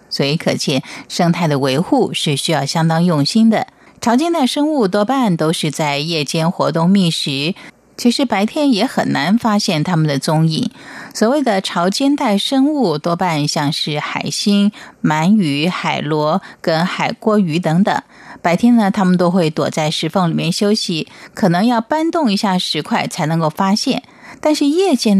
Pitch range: 160-220 Hz